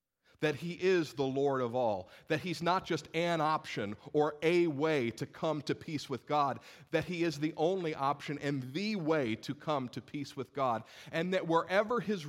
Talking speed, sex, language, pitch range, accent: 200 wpm, male, English, 155-225 Hz, American